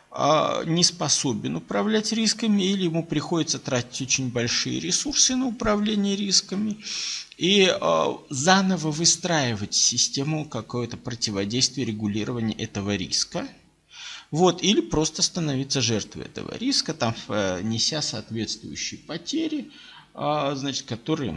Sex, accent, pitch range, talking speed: male, native, 135-210 Hz, 95 wpm